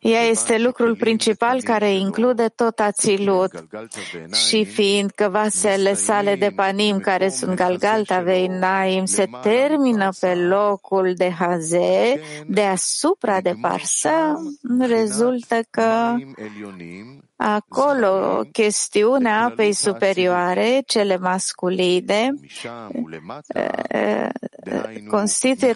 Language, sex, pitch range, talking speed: English, female, 190-230 Hz, 85 wpm